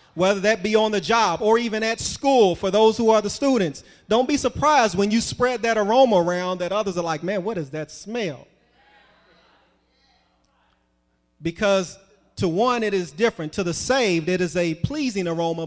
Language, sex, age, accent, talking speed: English, male, 30-49, American, 185 wpm